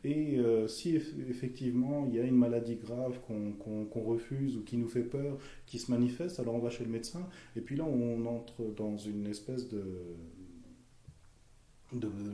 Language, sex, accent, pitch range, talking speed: French, male, French, 110-135 Hz, 195 wpm